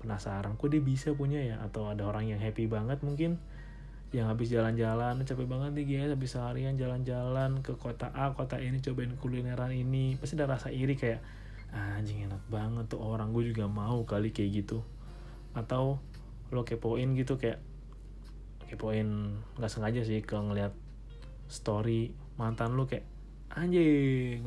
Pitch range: 110-135 Hz